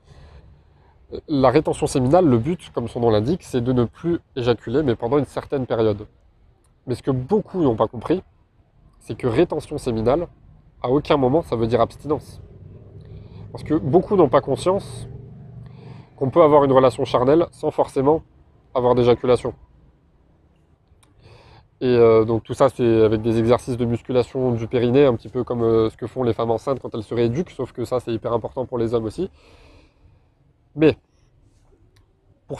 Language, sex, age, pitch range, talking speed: French, male, 20-39, 110-135 Hz, 170 wpm